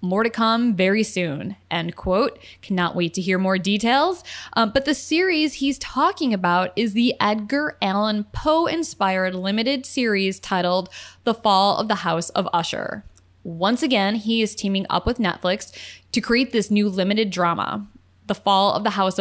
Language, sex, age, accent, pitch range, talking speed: English, female, 10-29, American, 180-230 Hz, 170 wpm